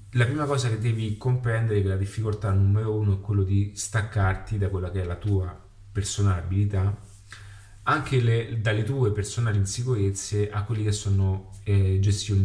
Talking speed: 170 wpm